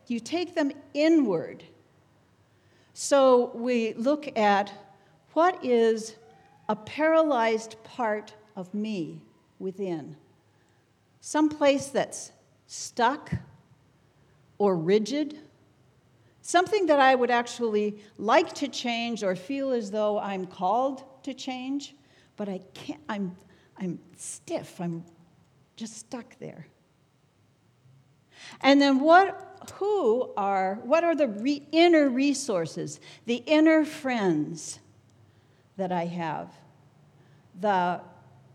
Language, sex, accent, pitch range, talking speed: English, female, American, 185-275 Hz, 100 wpm